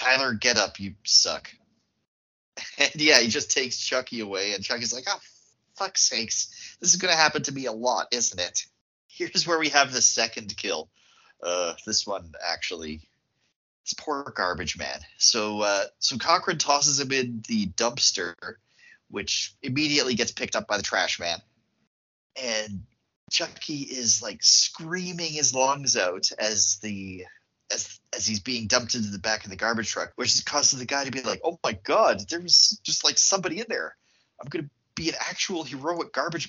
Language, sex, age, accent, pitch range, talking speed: English, male, 30-49, American, 110-155 Hz, 180 wpm